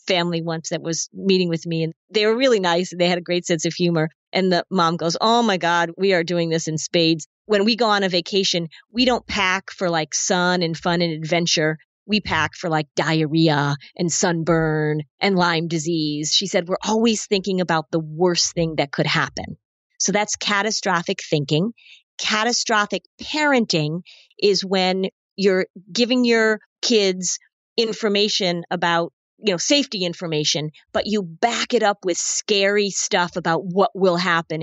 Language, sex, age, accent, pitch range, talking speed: English, female, 40-59, American, 165-205 Hz, 175 wpm